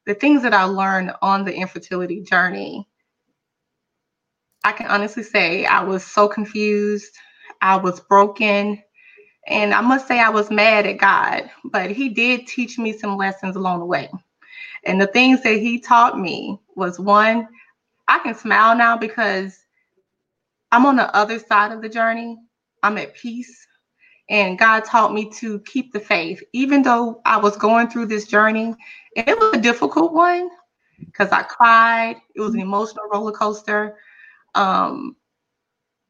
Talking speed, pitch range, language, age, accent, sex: 160 wpm, 200-235 Hz, English, 20-39, American, female